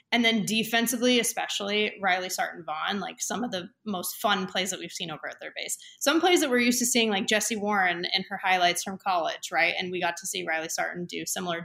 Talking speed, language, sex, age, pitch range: 230 wpm, English, female, 20-39, 180-220 Hz